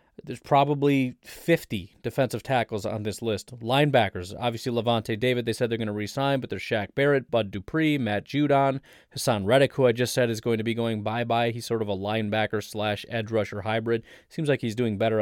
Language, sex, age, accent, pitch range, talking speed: English, male, 30-49, American, 105-125 Hz, 195 wpm